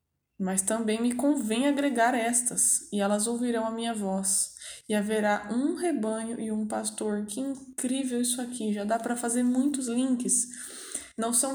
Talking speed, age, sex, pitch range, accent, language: 160 wpm, 10-29, female, 195-245 Hz, Brazilian, Portuguese